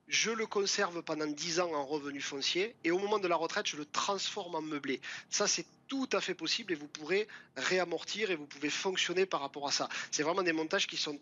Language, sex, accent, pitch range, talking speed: French, male, French, 150-185 Hz, 235 wpm